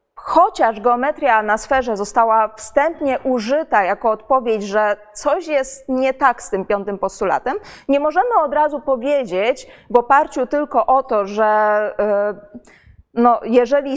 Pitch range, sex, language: 220-285 Hz, female, Polish